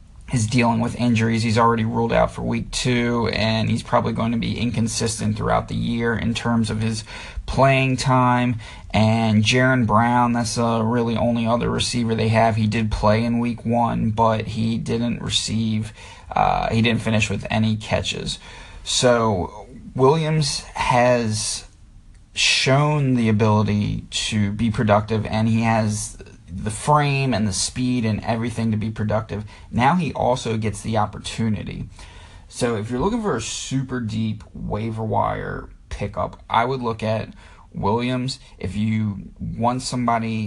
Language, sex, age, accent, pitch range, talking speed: English, male, 30-49, American, 105-115 Hz, 155 wpm